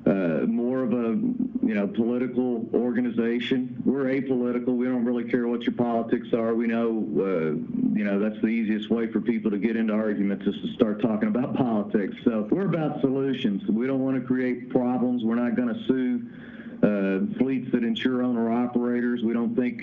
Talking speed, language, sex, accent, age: 190 wpm, English, male, American, 50-69